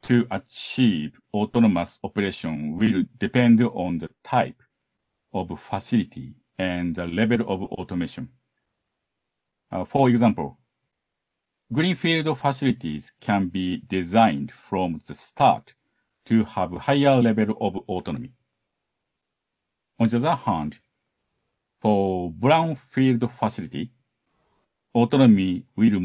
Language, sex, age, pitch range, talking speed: English, male, 50-69, 105-130 Hz, 95 wpm